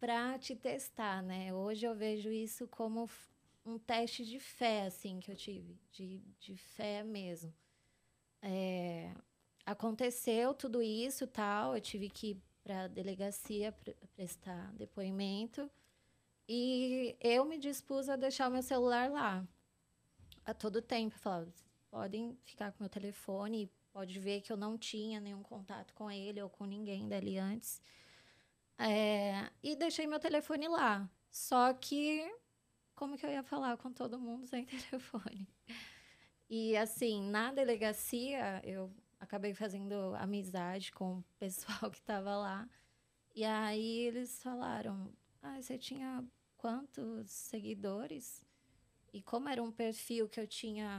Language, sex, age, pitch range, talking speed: Portuguese, female, 20-39, 200-245 Hz, 140 wpm